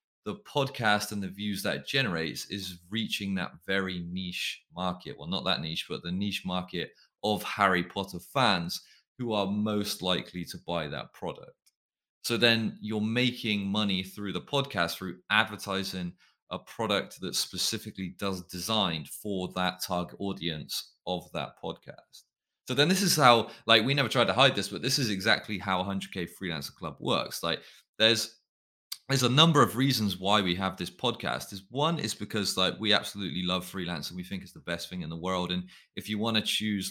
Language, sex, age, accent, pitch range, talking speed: English, male, 30-49, British, 90-110 Hz, 185 wpm